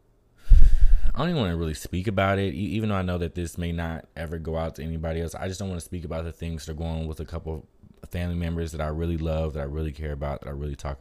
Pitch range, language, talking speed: 75-90 Hz, English, 300 wpm